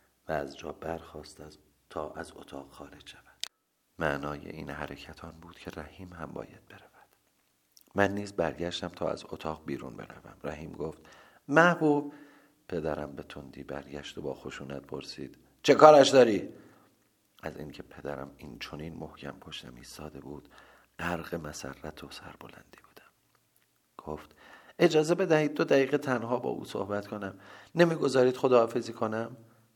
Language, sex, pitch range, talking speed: Persian, male, 75-90 Hz, 135 wpm